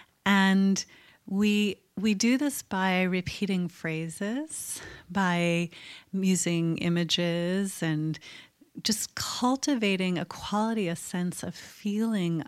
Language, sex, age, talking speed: English, female, 30-49, 95 wpm